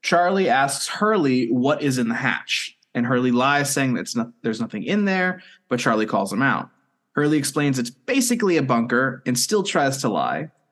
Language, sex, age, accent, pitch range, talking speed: English, male, 20-39, American, 120-180 Hz, 185 wpm